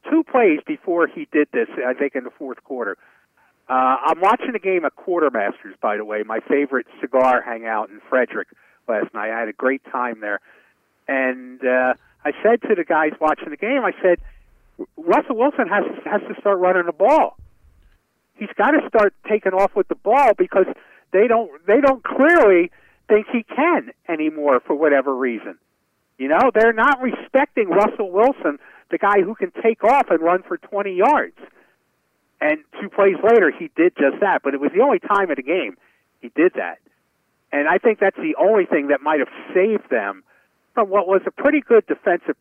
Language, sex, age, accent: English, male, 50-69, American